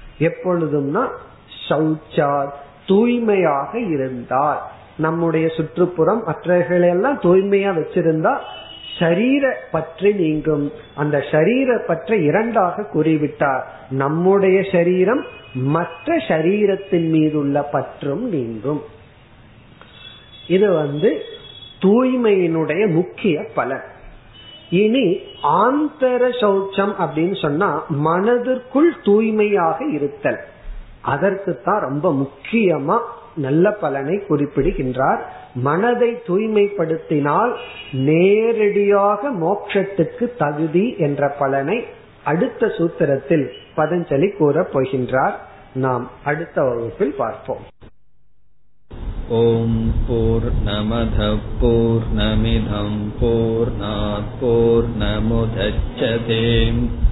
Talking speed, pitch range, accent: 65 wpm, 115-180 Hz, native